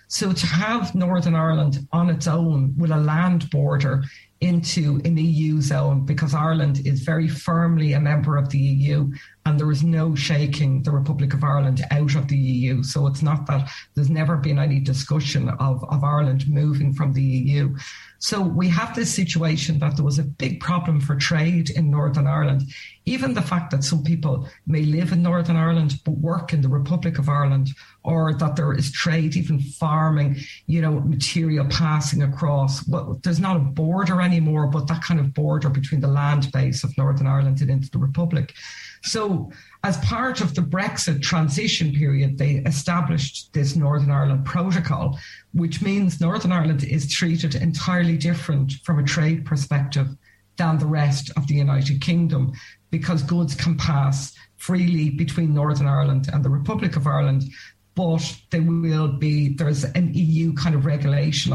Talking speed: 175 wpm